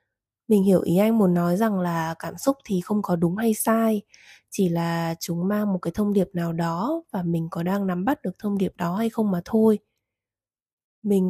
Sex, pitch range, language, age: female, 175-225 Hz, Vietnamese, 20-39